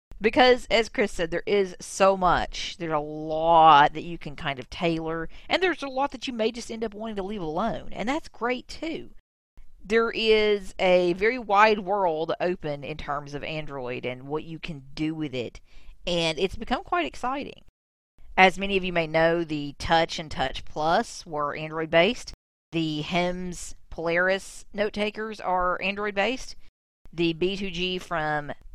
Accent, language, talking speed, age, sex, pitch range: American, English, 170 wpm, 40-59, female, 150-200 Hz